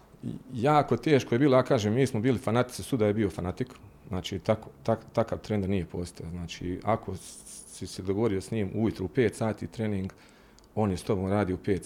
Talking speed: 200 wpm